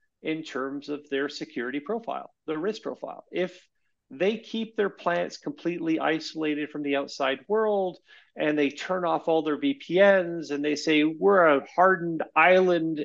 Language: English